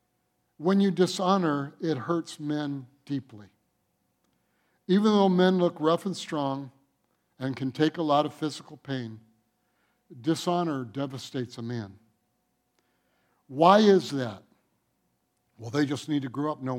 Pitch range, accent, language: 135-175 Hz, American, English